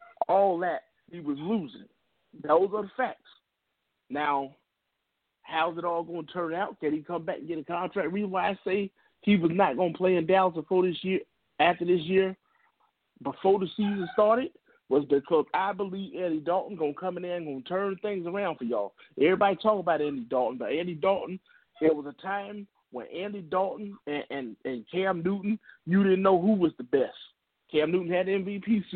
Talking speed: 205 wpm